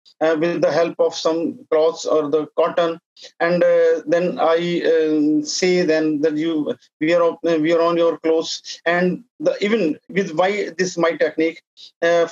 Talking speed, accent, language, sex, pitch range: 170 wpm, Indian, English, male, 155-175 Hz